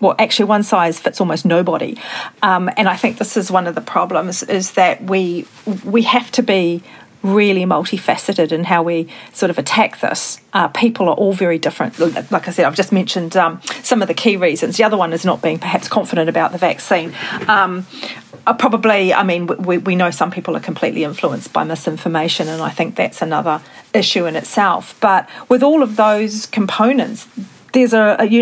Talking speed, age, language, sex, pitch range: 200 wpm, 40-59, English, female, 185-225 Hz